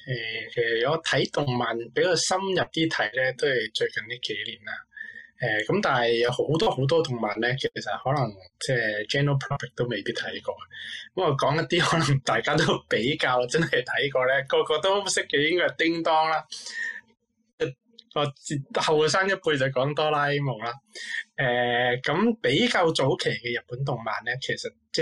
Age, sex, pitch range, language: 20-39, male, 125-170 Hz, Chinese